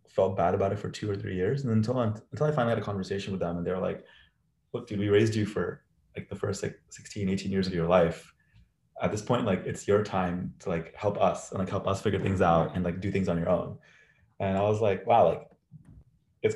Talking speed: 260 wpm